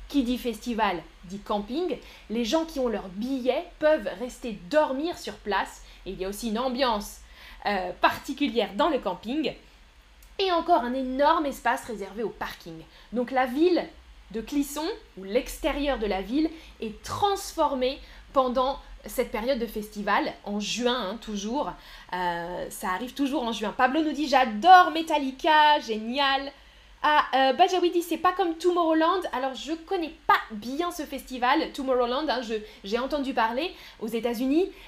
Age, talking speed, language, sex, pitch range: 20-39, 160 wpm, French, female, 225-315 Hz